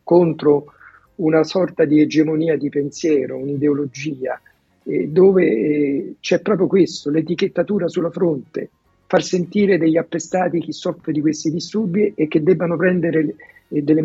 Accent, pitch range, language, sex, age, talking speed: native, 150-180 Hz, Italian, male, 50-69, 125 wpm